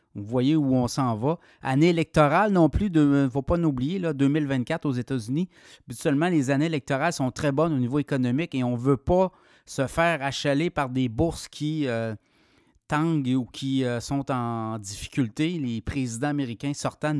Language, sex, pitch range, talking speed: French, male, 130-160 Hz, 180 wpm